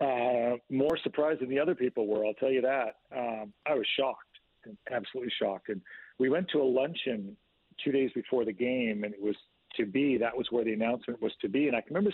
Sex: male